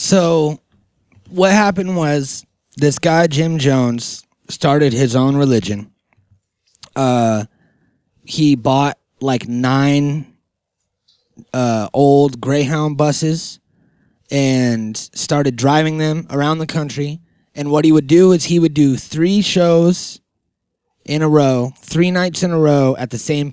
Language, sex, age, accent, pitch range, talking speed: English, male, 20-39, American, 125-155 Hz, 130 wpm